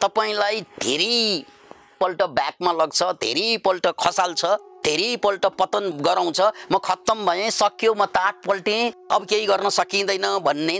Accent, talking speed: Indian, 135 wpm